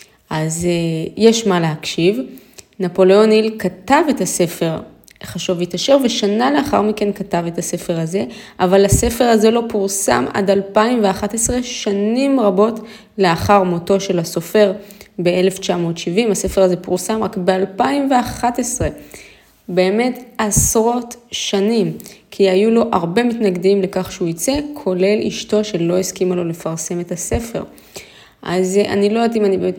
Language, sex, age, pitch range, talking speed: Hebrew, female, 20-39, 180-215 Hz, 125 wpm